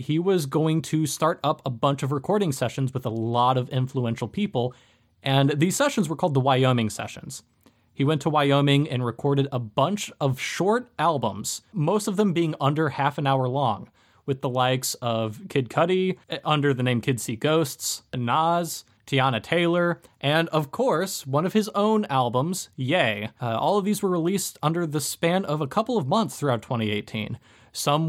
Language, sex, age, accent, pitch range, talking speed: English, male, 20-39, American, 125-170 Hz, 185 wpm